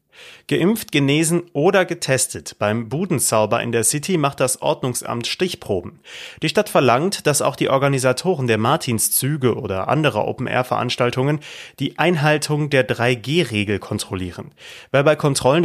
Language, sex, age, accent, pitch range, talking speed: German, male, 30-49, German, 115-155 Hz, 125 wpm